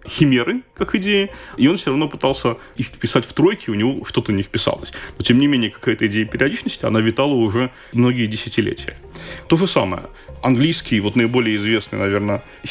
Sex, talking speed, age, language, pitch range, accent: male, 175 wpm, 30-49, Russian, 110-140 Hz, native